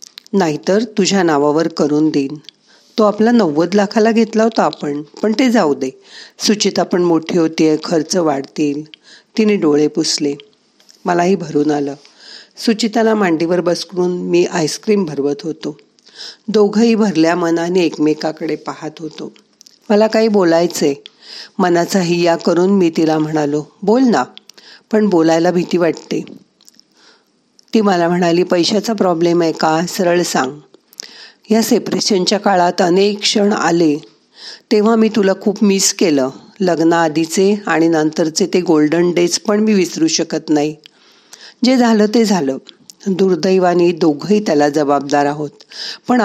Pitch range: 155-205 Hz